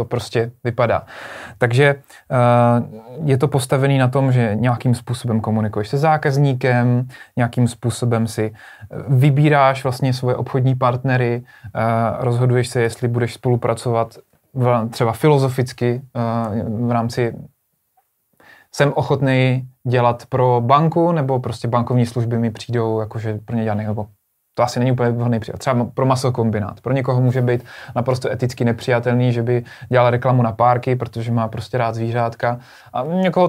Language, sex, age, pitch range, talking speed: Czech, male, 20-39, 115-135 Hz, 135 wpm